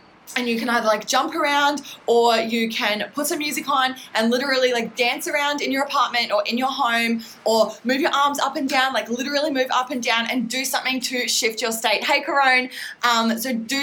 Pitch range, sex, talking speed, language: 225-270 Hz, female, 220 wpm, English